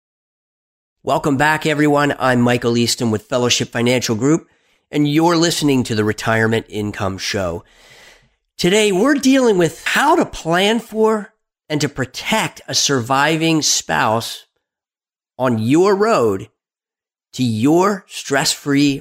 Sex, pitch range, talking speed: male, 125-185 Hz, 120 wpm